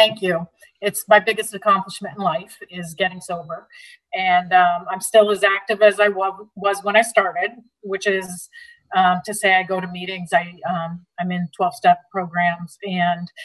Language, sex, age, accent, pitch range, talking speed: English, female, 40-59, American, 180-215 Hz, 175 wpm